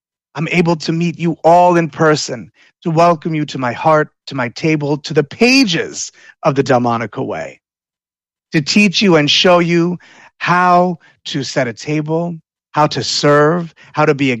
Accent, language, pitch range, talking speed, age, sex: American, English, 125-165 Hz, 175 wpm, 30-49, male